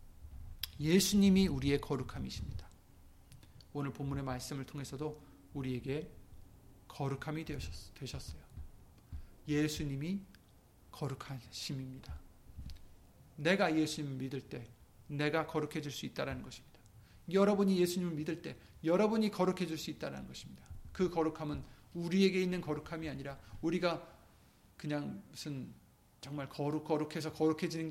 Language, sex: Korean, male